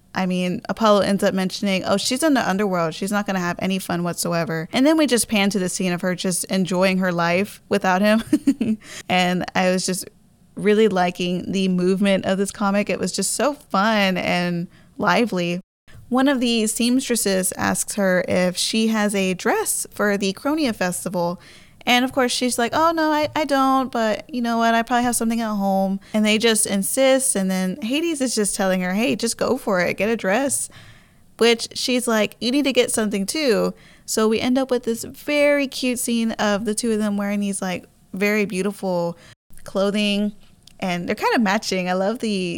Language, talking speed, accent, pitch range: English, 205 wpm, American, 185-235 Hz